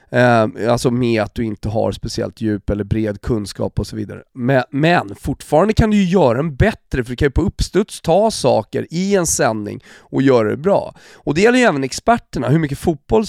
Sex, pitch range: male, 115-145 Hz